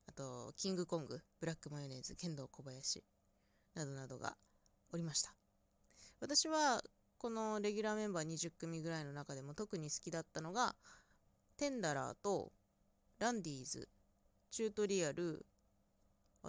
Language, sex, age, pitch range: Japanese, female, 20-39, 135-215 Hz